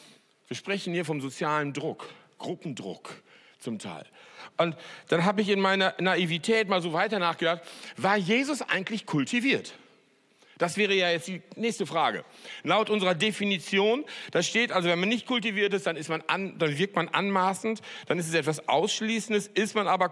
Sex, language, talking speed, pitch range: male, German, 175 wpm, 170-220 Hz